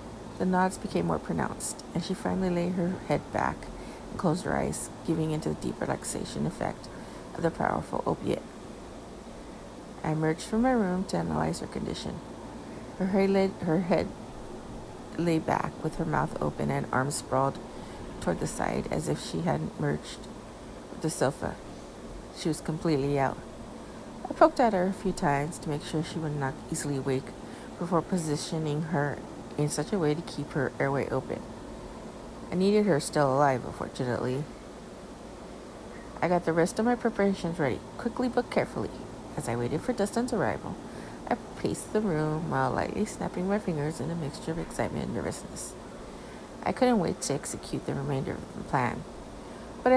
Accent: American